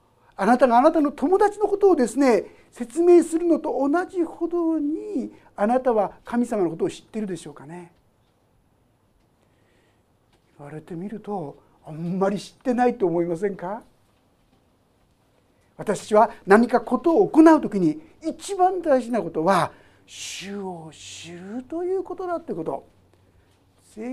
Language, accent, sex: Japanese, native, male